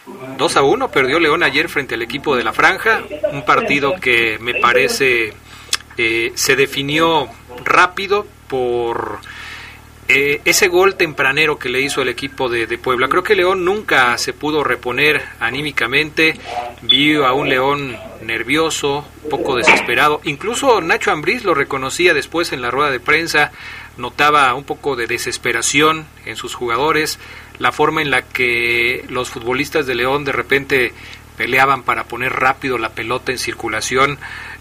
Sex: male